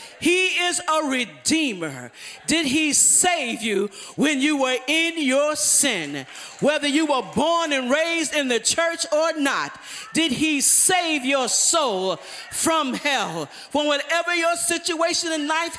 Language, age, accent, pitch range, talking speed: English, 40-59, American, 285-345 Hz, 145 wpm